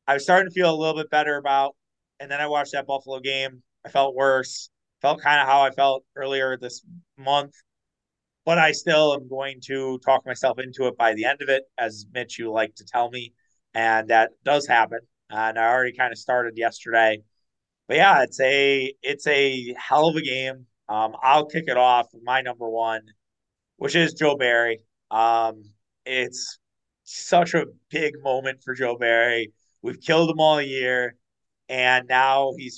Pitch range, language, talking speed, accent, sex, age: 115-135 Hz, English, 185 wpm, American, male, 30-49